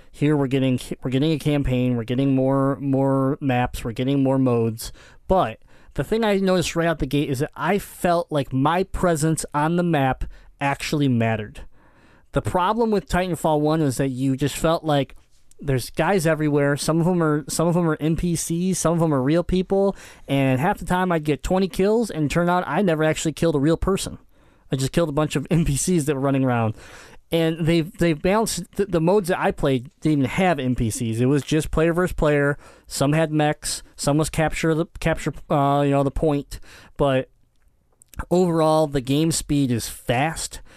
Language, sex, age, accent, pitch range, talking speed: English, male, 20-39, American, 135-170 Hz, 200 wpm